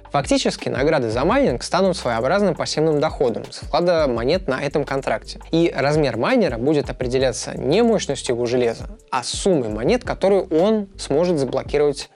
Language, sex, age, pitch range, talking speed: Russian, male, 20-39, 125-175 Hz, 150 wpm